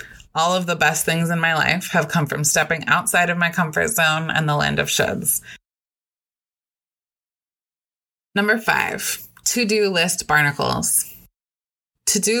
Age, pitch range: 20-39, 155-200 Hz